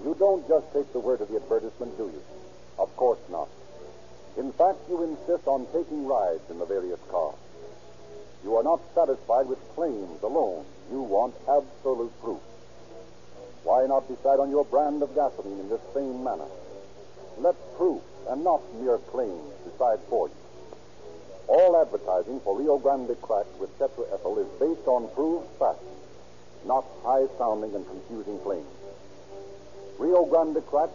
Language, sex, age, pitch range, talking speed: English, male, 60-79, 130-170 Hz, 150 wpm